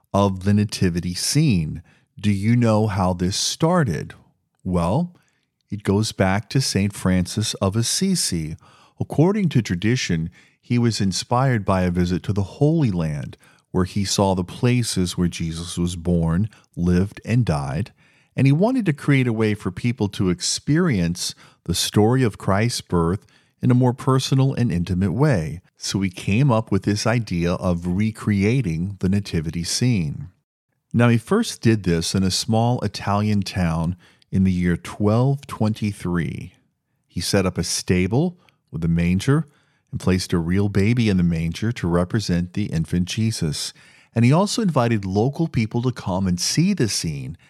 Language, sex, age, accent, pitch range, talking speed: English, male, 40-59, American, 90-130 Hz, 160 wpm